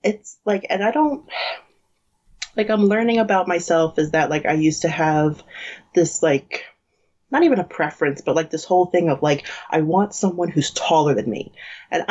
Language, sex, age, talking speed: English, female, 30-49, 190 wpm